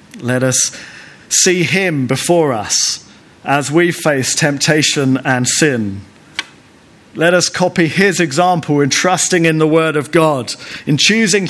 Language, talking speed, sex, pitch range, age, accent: English, 135 wpm, male, 115-155 Hz, 40-59, British